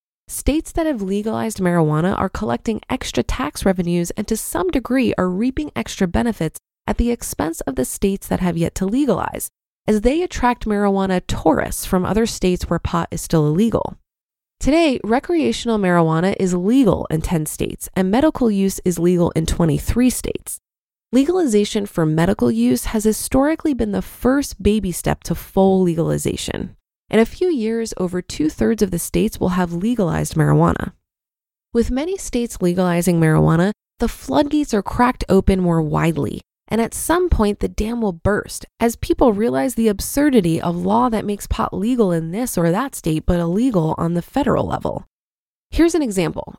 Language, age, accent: English, 20-39, American